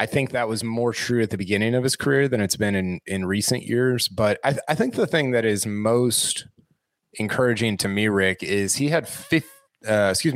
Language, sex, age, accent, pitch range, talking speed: English, male, 30-49, American, 95-120 Hz, 225 wpm